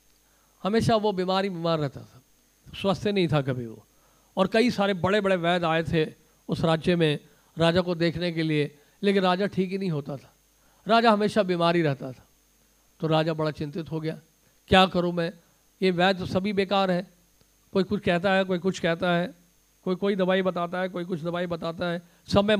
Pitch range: 160-195 Hz